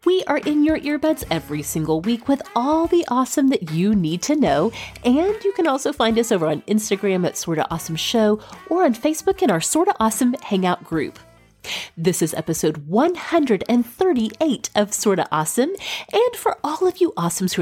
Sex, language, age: female, English, 40-59